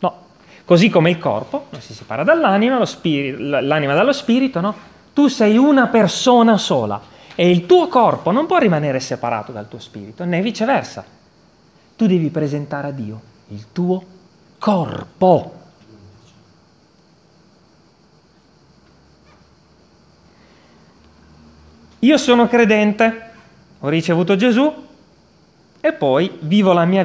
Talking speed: 110 wpm